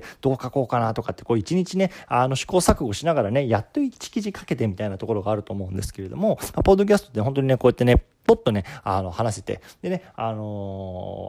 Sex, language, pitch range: male, Japanese, 105-150 Hz